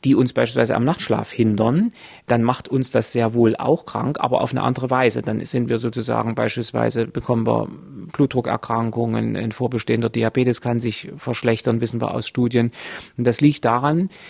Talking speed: 170 wpm